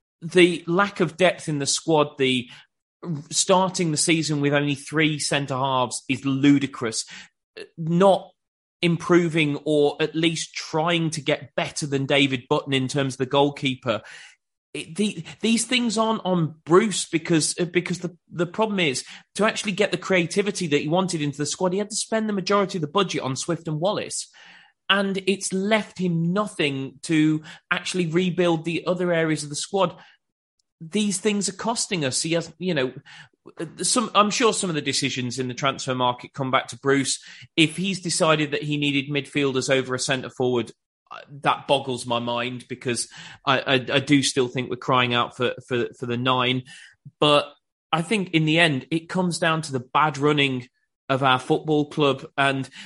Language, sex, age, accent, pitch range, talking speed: English, male, 30-49, British, 135-180 Hz, 175 wpm